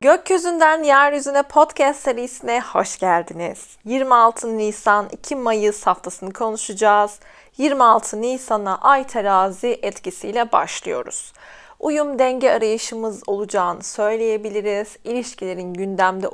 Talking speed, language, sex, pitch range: 90 wpm, Turkish, female, 195-245 Hz